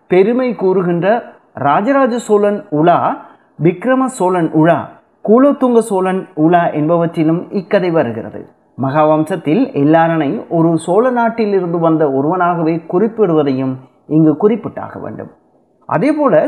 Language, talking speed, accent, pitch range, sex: Tamil, 95 wpm, native, 155-210 Hz, male